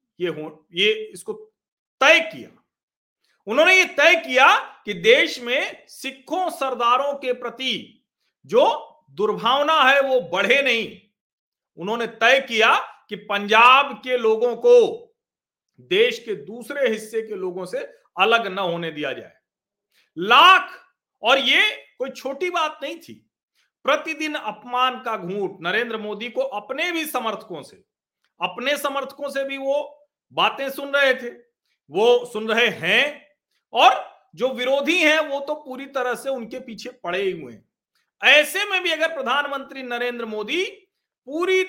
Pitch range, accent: 220-315 Hz, native